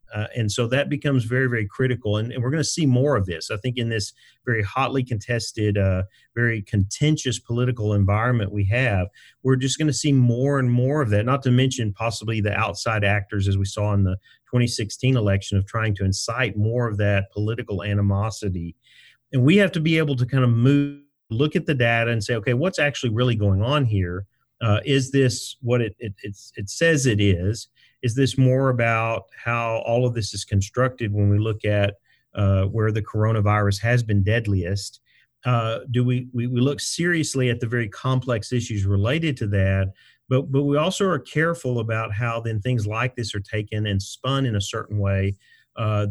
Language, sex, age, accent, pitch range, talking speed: English, male, 40-59, American, 105-130 Hz, 200 wpm